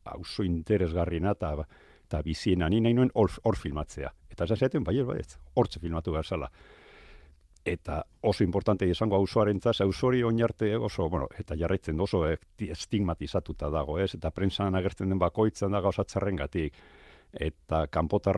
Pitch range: 85-105 Hz